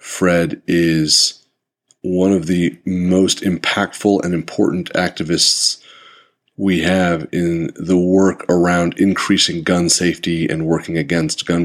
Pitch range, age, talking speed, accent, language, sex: 85-95 Hz, 30-49, 120 wpm, American, English, male